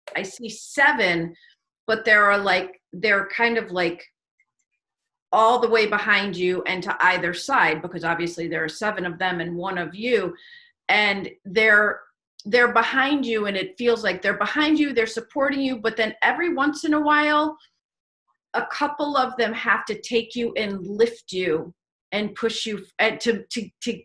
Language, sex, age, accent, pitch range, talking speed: English, female, 40-59, American, 195-245 Hz, 185 wpm